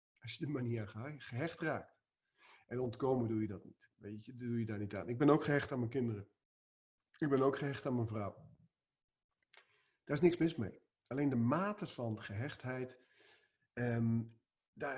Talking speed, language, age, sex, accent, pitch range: 195 wpm, Dutch, 40-59, male, Dutch, 120-160 Hz